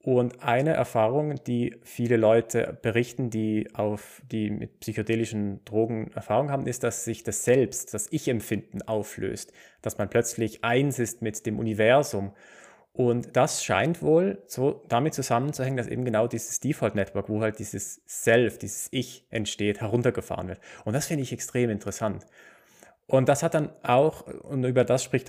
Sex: male